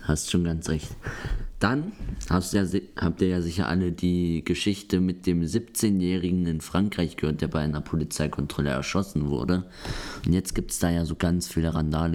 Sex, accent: male, German